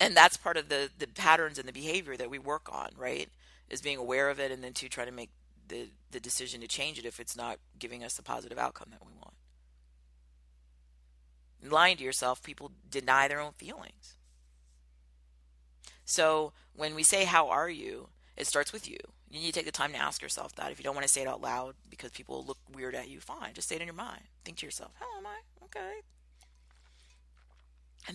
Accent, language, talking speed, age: American, English, 220 wpm, 40-59